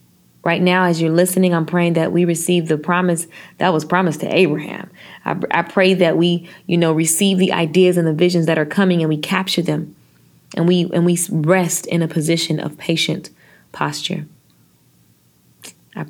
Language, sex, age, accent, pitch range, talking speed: English, female, 20-39, American, 155-190 Hz, 185 wpm